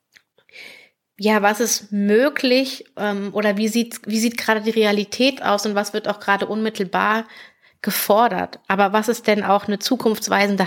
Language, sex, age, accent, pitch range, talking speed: German, female, 30-49, German, 200-240 Hz, 150 wpm